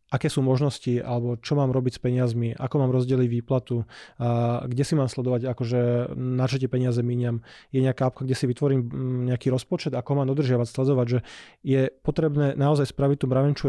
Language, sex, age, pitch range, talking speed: Slovak, male, 20-39, 125-140 Hz, 190 wpm